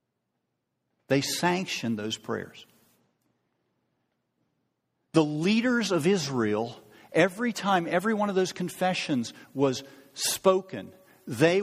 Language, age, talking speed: English, 50-69, 95 wpm